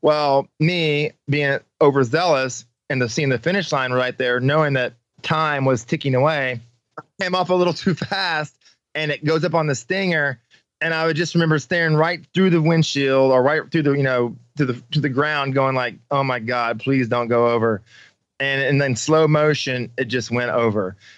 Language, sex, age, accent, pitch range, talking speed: English, male, 20-39, American, 130-155 Hz, 200 wpm